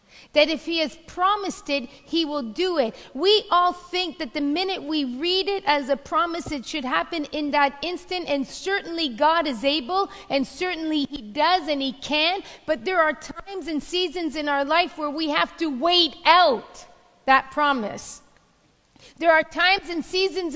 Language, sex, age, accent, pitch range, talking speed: English, female, 40-59, American, 265-345 Hz, 180 wpm